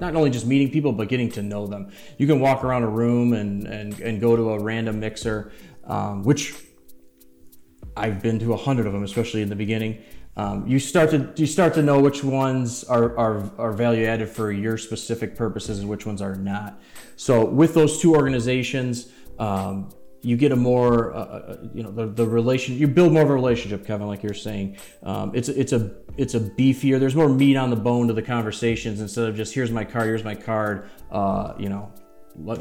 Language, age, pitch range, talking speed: English, 30-49, 105-130 Hz, 215 wpm